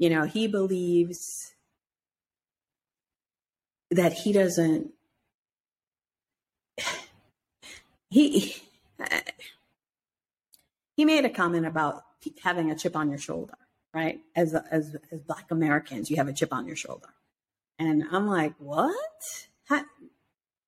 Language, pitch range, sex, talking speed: English, 165-245 Hz, female, 105 wpm